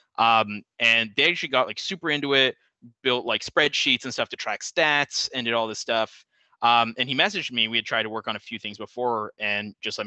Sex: male